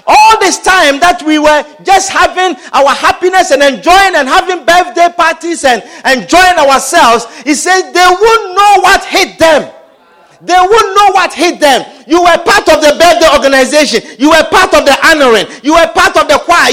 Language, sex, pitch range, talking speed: English, male, 270-370 Hz, 185 wpm